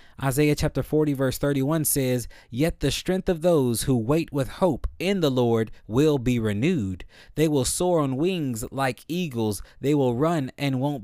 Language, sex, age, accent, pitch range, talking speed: English, male, 20-39, American, 120-150 Hz, 180 wpm